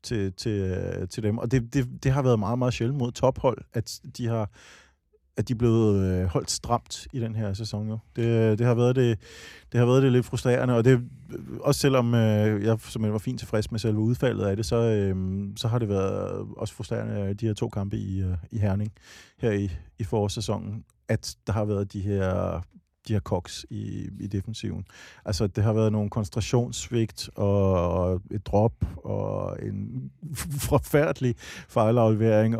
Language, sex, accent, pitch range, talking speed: Danish, male, native, 100-120 Hz, 185 wpm